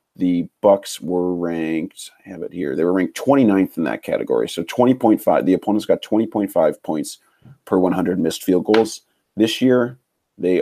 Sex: male